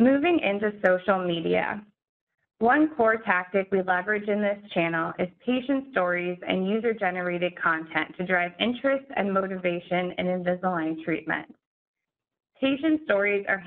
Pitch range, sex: 180-215 Hz, female